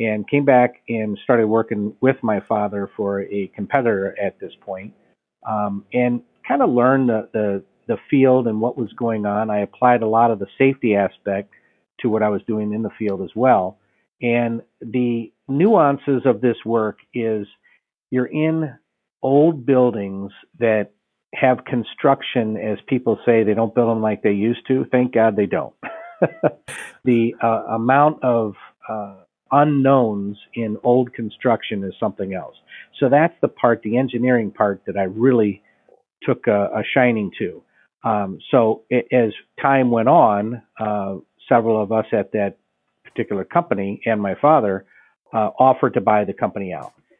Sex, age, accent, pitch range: male, 50-69, American, 105-125 Hz